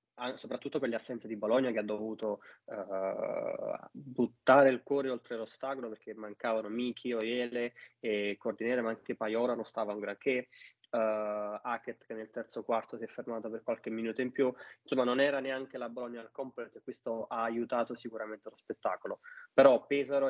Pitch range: 110-125 Hz